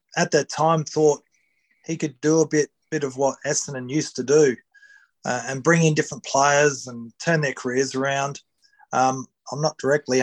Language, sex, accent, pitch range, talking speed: English, male, Australian, 130-160 Hz, 180 wpm